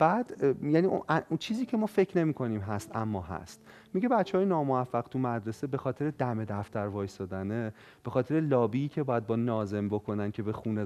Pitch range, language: 110-160 Hz, Persian